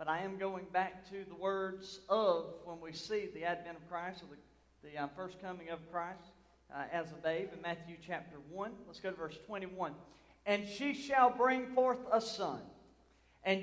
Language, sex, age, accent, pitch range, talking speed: English, male, 40-59, American, 180-245 Hz, 195 wpm